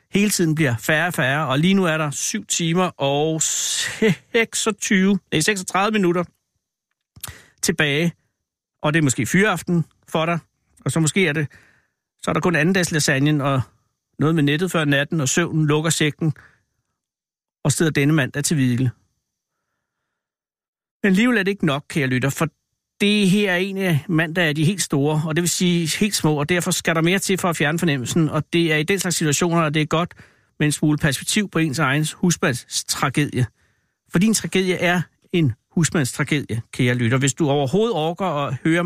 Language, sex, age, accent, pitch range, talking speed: Danish, male, 60-79, native, 145-180 Hz, 190 wpm